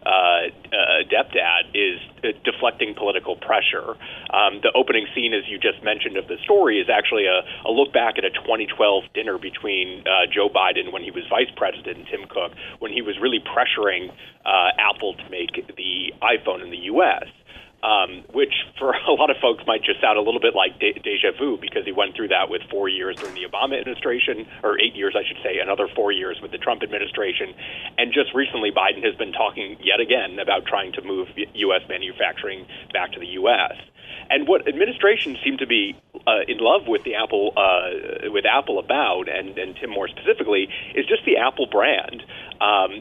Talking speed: 200 wpm